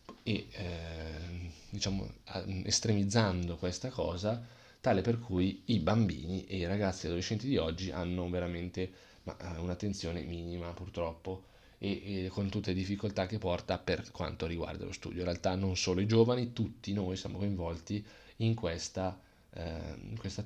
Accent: native